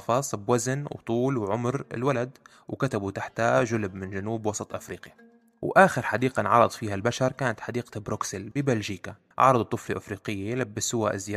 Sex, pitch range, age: male, 100-125 Hz, 20-39